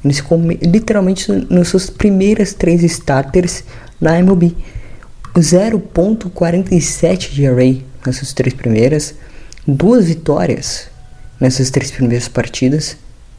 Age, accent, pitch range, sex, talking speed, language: 10-29, Brazilian, 120-155 Hz, female, 90 wpm, Portuguese